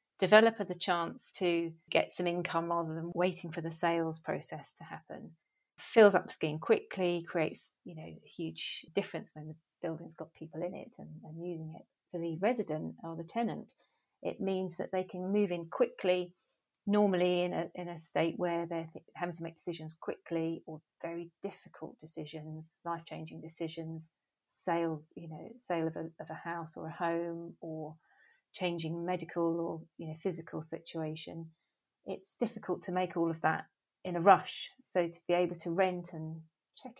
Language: English